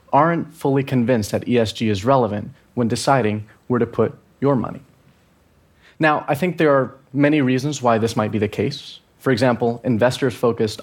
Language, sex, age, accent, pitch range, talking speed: English, male, 30-49, American, 110-140 Hz, 170 wpm